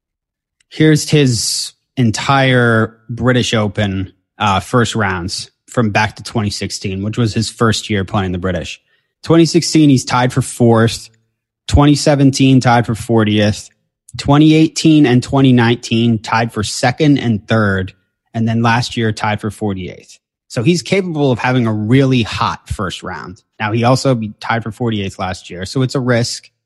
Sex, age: male, 30-49